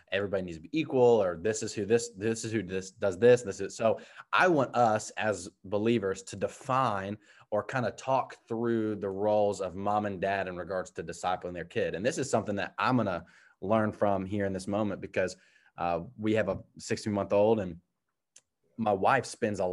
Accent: American